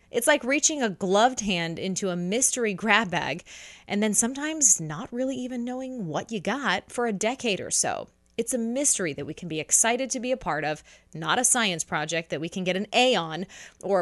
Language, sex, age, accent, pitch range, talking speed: English, female, 30-49, American, 170-230 Hz, 220 wpm